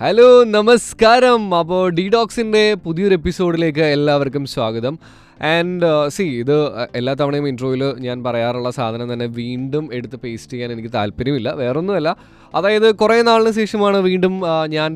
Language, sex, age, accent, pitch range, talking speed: Malayalam, male, 20-39, native, 130-185 Hz, 125 wpm